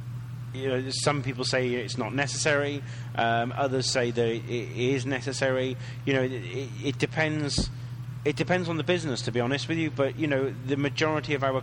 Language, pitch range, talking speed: English, 120-135 Hz, 190 wpm